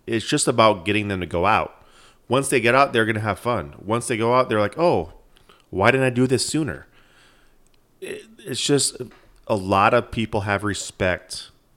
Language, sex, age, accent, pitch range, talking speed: English, male, 30-49, American, 95-115 Hz, 195 wpm